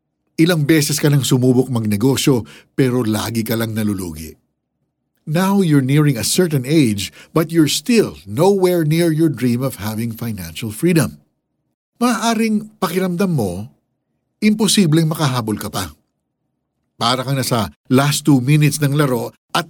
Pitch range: 115-165 Hz